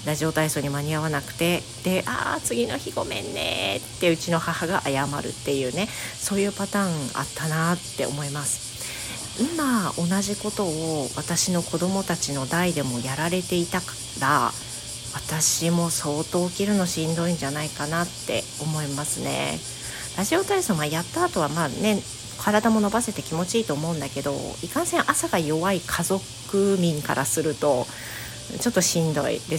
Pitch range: 145-185 Hz